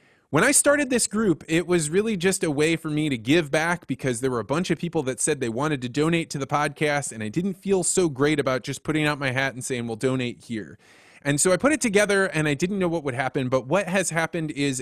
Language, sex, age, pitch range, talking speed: English, male, 20-39, 135-175 Hz, 270 wpm